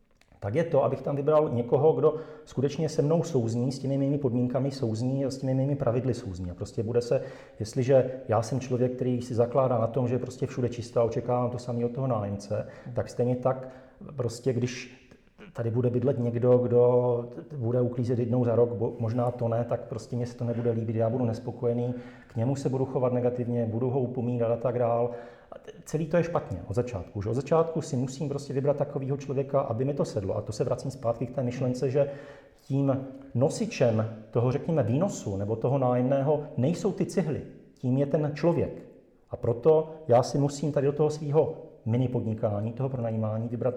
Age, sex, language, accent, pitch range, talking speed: 40-59, male, Czech, native, 115-140 Hz, 195 wpm